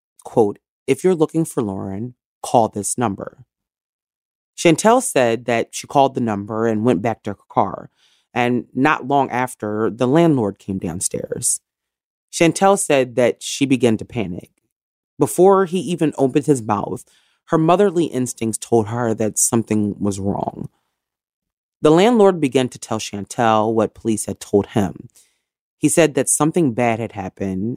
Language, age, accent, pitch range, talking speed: English, 30-49, American, 105-155 Hz, 150 wpm